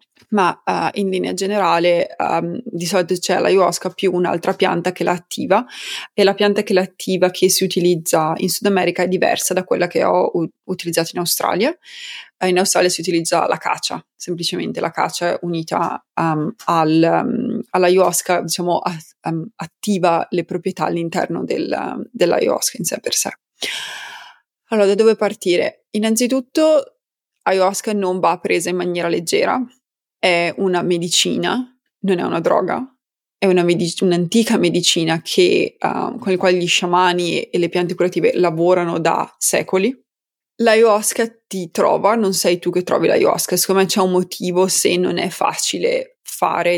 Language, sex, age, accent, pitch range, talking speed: Italian, female, 20-39, native, 175-205 Hz, 155 wpm